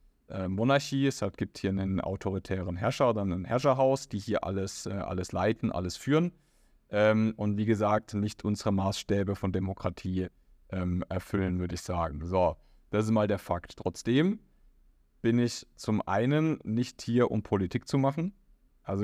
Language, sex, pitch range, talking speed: German, male, 95-115 Hz, 150 wpm